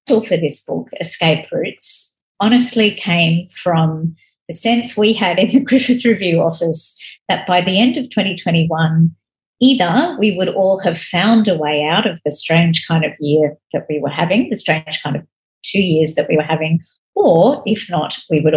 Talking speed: 185 wpm